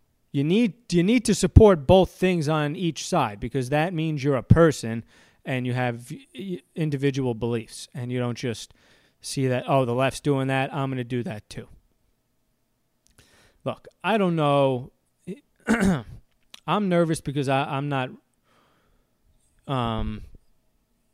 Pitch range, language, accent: 115-155 Hz, English, American